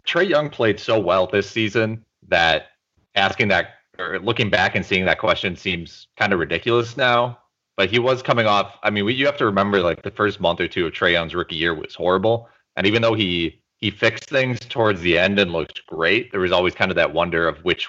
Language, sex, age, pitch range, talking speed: English, male, 30-49, 85-115 Hz, 230 wpm